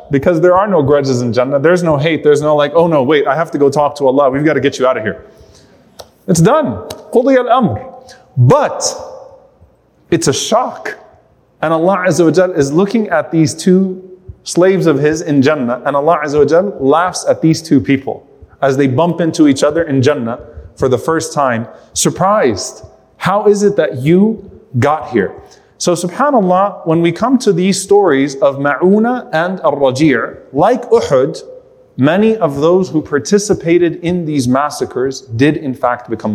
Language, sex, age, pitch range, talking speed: English, male, 30-49, 140-185 Hz, 175 wpm